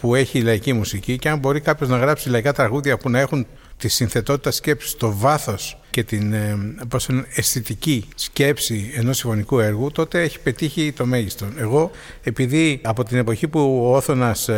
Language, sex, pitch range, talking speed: Greek, male, 120-150 Hz, 175 wpm